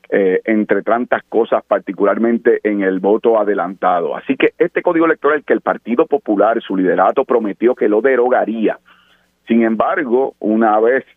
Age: 40-59